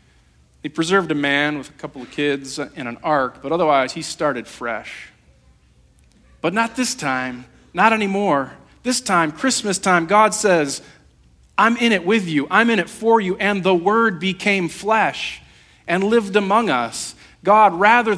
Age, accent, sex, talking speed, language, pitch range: 40-59, American, male, 165 wpm, English, 140-220 Hz